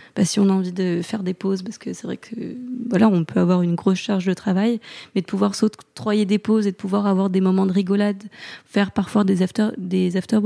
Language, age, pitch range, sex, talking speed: French, 20-39, 190-220 Hz, female, 245 wpm